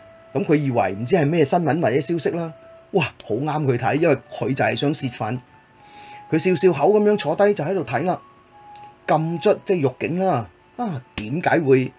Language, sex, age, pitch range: Chinese, male, 30-49, 125-185 Hz